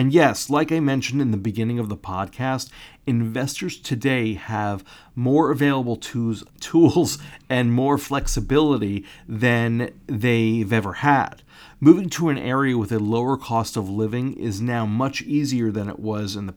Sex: male